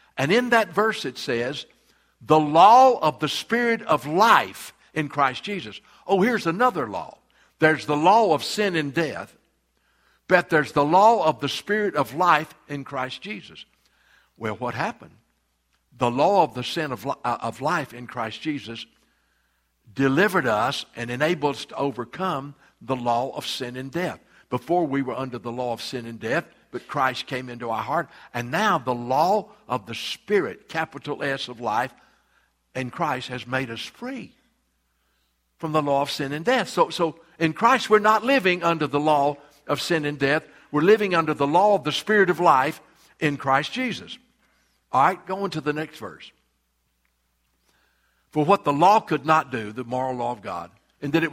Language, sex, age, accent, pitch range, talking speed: English, male, 60-79, American, 125-175 Hz, 185 wpm